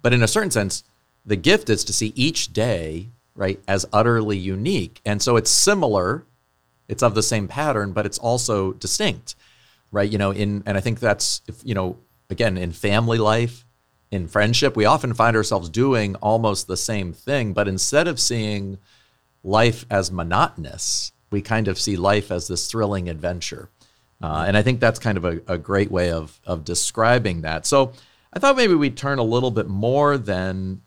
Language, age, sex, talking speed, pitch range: English, 40-59, male, 190 wpm, 90-115 Hz